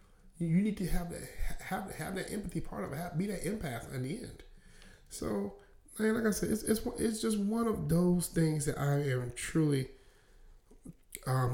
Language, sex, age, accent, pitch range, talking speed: English, male, 30-49, American, 110-155 Hz, 190 wpm